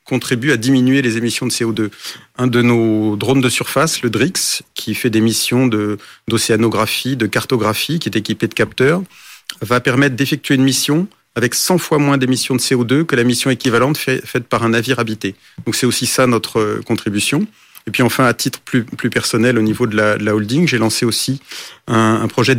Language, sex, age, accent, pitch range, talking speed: French, male, 40-59, French, 110-130 Hz, 205 wpm